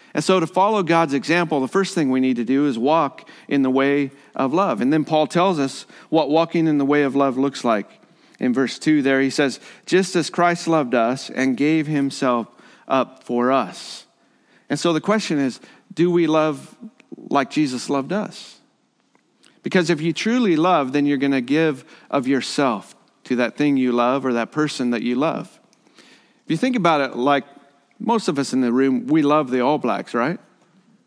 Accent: American